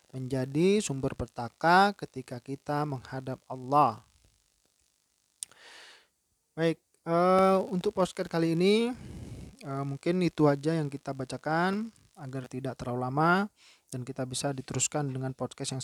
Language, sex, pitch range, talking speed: Indonesian, male, 135-170 Hz, 115 wpm